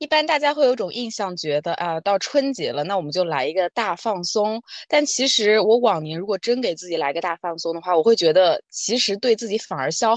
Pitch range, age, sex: 170-245 Hz, 20-39, female